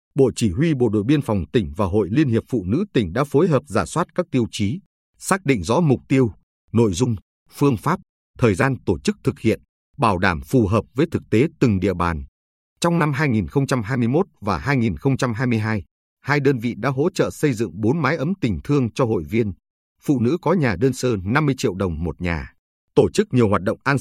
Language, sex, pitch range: Vietnamese, male, 100-140 Hz